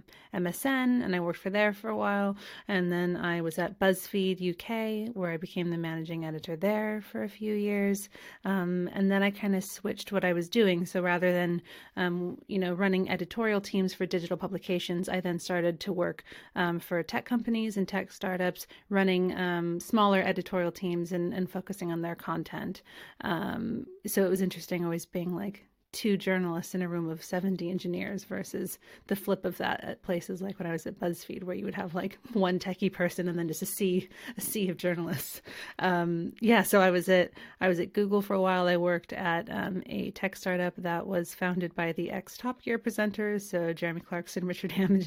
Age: 30-49